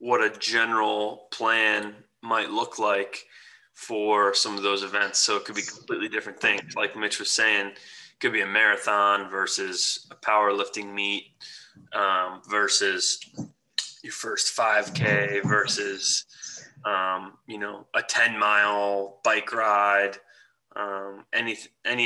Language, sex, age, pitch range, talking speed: English, male, 20-39, 100-115 Hz, 135 wpm